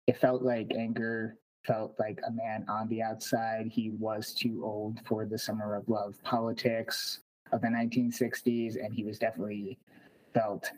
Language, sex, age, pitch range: English, male, 30-49, 105-120 Hz